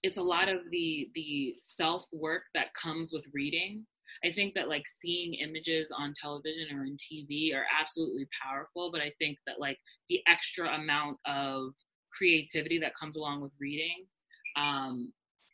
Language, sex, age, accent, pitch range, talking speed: English, female, 20-39, American, 140-165 Hz, 160 wpm